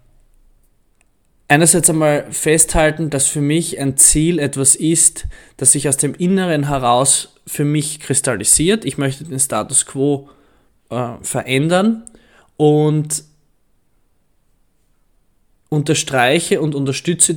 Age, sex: 20-39, male